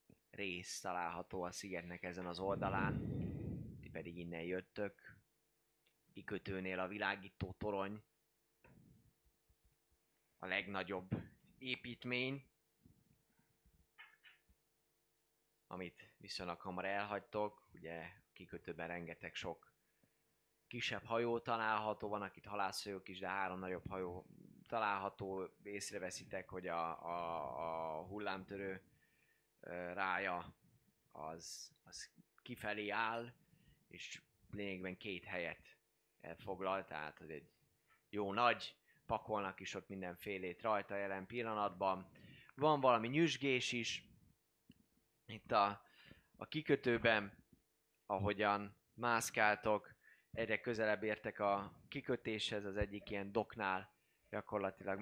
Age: 20-39